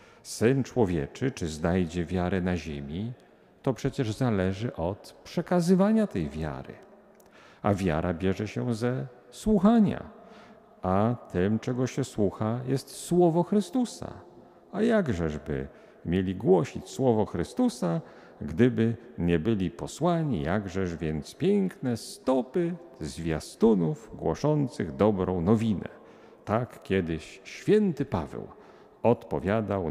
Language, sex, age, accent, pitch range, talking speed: Polish, male, 50-69, native, 90-135 Hz, 100 wpm